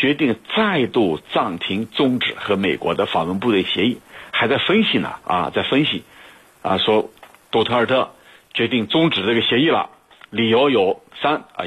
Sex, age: male, 60-79